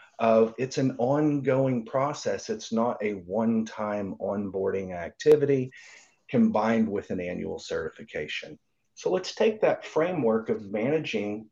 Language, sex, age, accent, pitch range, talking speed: English, male, 40-59, American, 110-145 Hz, 120 wpm